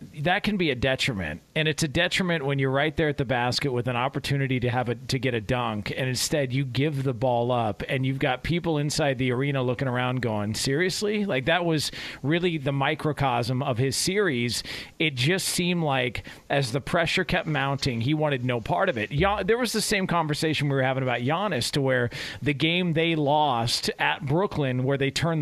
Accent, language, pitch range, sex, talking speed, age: American, English, 135-180 Hz, male, 210 wpm, 40-59